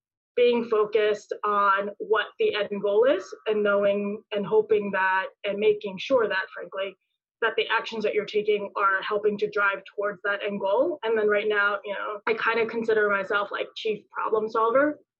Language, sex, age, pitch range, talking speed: English, female, 20-39, 200-230 Hz, 185 wpm